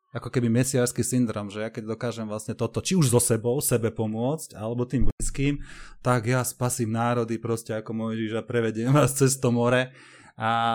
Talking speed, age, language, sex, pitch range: 185 wpm, 30-49, Slovak, male, 105-120 Hz